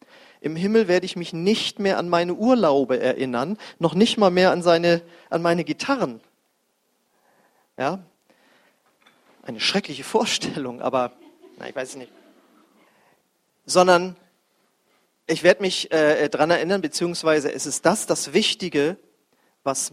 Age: 40-59